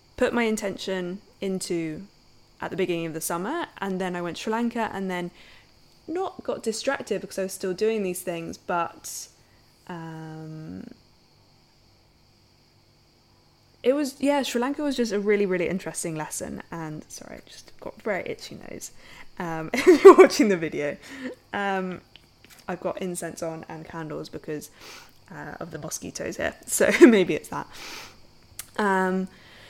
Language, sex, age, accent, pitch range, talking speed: English, female, 10-29, British, 175-225 Hz, 150 wpm